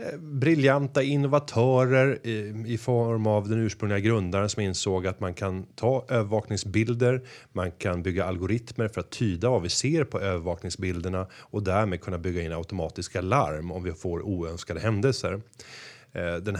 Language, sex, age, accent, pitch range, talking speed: Swedish, male, 30-49, native, 95-120 Hz, 145 wpm